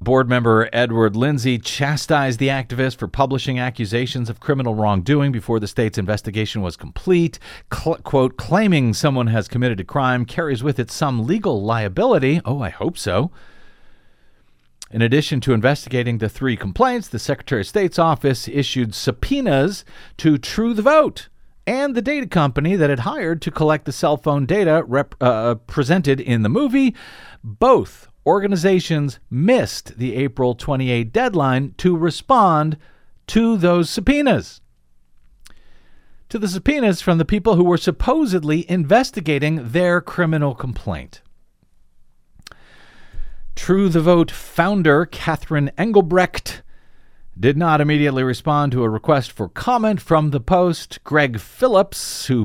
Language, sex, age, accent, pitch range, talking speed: English, male, 50-69, American, 115-165 Hz, 135 wpm